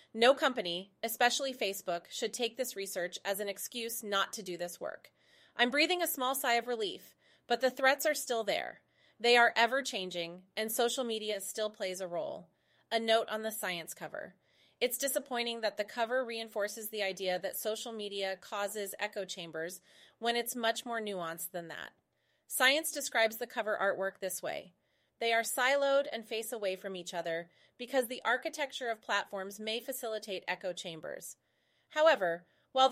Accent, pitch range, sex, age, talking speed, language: American, 195-240 Hz, female, 30-49, 170 wpm, English